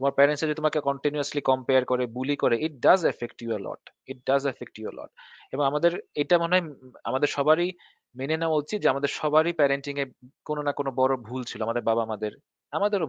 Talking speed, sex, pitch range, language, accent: 90 wpm, male, 125-155 Hz, Bengali, native